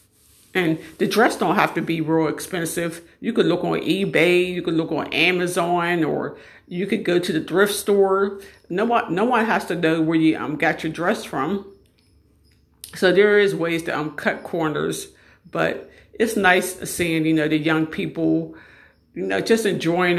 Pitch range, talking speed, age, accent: 160-190 Hz, 185 wpm, 50-69, American